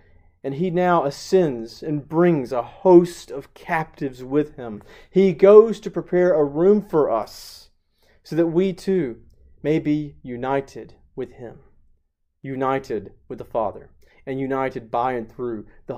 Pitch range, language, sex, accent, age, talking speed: 125-180 Hz, English, male, American, 30-49, 145 wpm